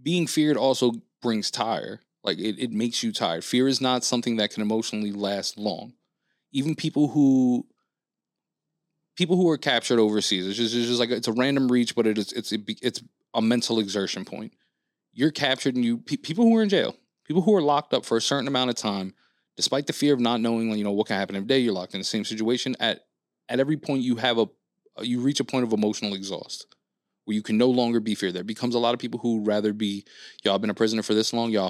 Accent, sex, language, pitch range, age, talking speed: American, male, English, 105-130 Hz, 20-39, 235 wpm